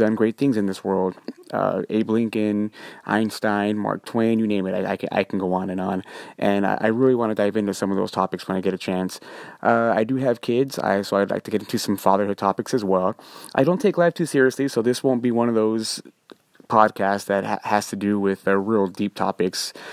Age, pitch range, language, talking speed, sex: 20-39, 100-125 Hz, English, 240 wpm, male